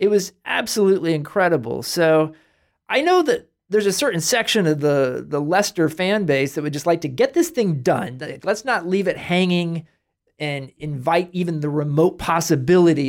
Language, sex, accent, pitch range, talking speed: English, male, American, 130-170 Hz, 175 wpm